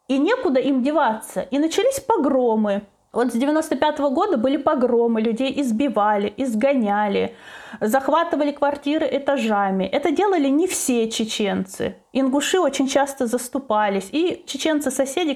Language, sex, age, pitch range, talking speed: Russian, female, 30-49, 225-290 Hz, 115 wpm